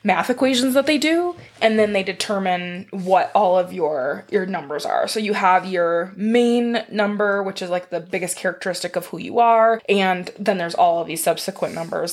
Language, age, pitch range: English, 20-39, 185-235 Hz